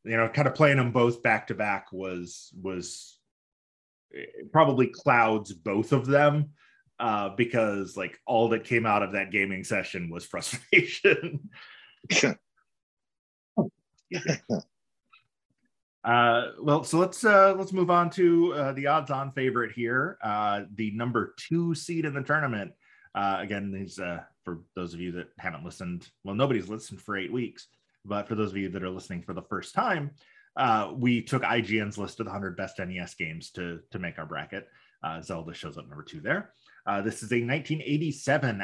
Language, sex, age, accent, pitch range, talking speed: English, male, 30-49, American, 100-145 Hz, 170 wpm